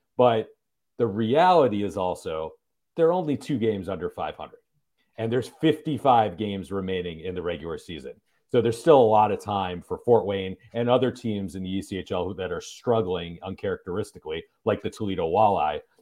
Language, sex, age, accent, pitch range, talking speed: English, male, 40-59, American, 95-115 Hz, 170 wpm